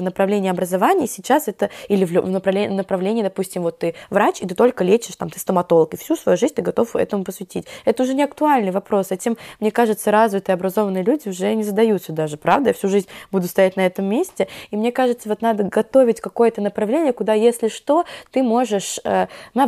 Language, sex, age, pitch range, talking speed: Russian, female, 20-39, 175-225 Hz, 200 wpm